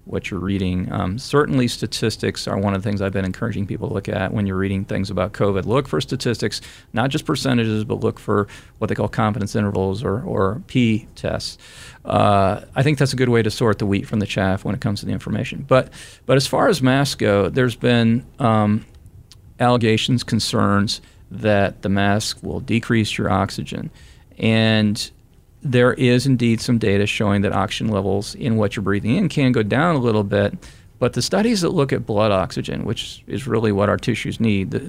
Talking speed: 205 wpm